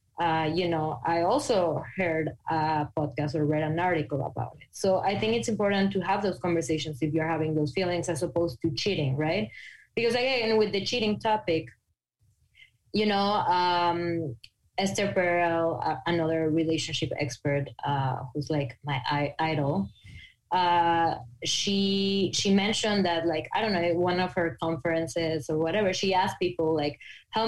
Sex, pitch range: female, 155-185 Hz